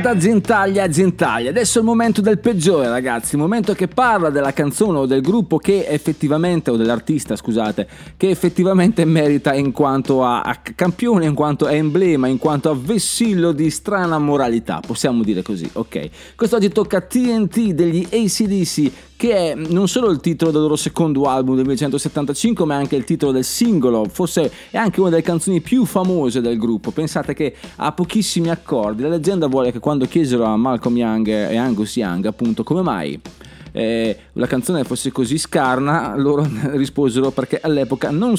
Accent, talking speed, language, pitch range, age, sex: native, 175 wpm, Italian, 130-185 Hz, 30-49, male